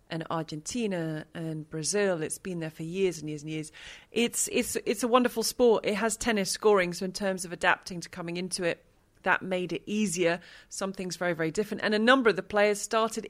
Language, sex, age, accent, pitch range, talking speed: English, female, 30-49, British, 180-225 Hz, 210 wpm